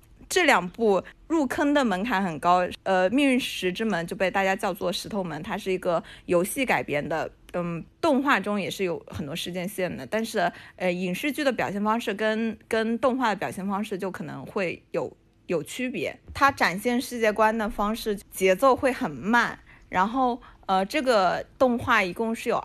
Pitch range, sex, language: 180-235 Hz, female, Chinese